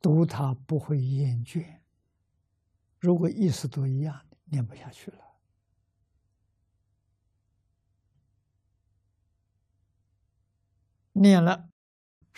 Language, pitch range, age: Chinese, 100-140 Hz, 60-79